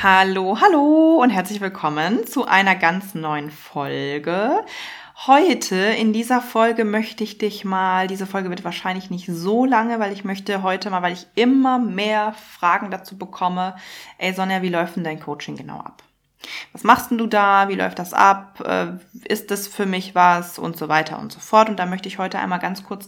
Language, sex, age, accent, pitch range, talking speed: German, female, 20-39, German, 180-215 Hz, 190 wpm